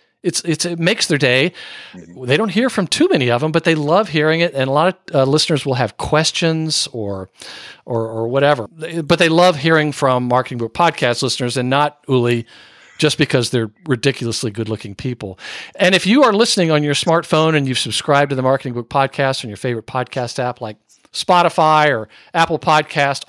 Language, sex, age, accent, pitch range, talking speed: English, male, 50-69, American, 125-170 Hz, 195 wpm